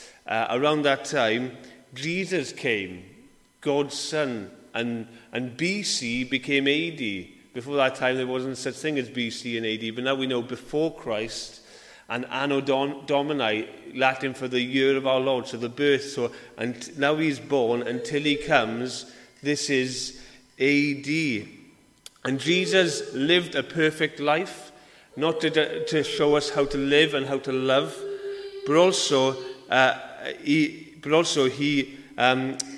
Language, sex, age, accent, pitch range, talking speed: English, male, 30-49, British, 125-155 Hz, 150 wpm